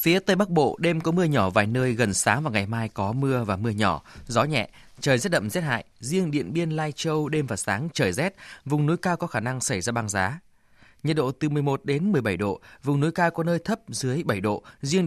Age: 20-39